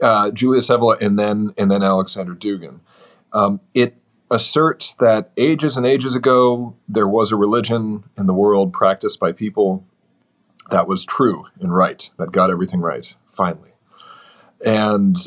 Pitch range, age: 95-120 Hz, 40-59